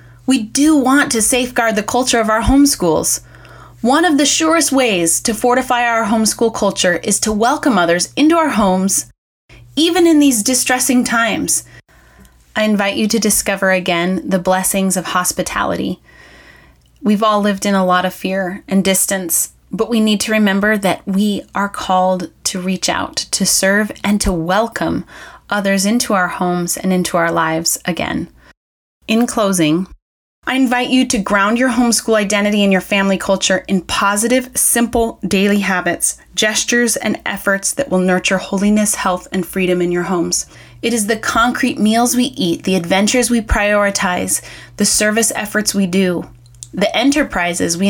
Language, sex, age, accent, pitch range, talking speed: English, female, 20-39, American, 180-235 Hz, 160 wpm